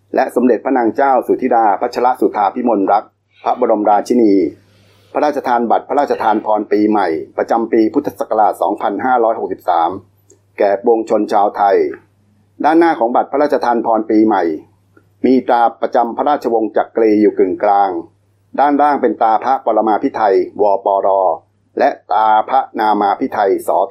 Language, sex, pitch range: Thai, male, 100-140 Hz